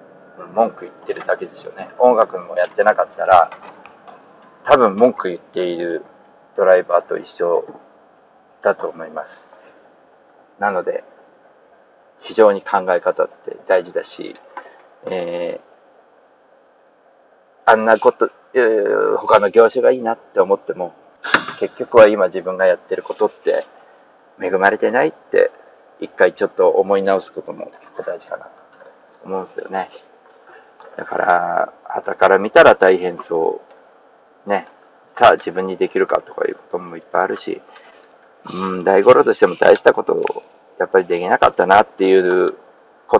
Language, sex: Japanese, male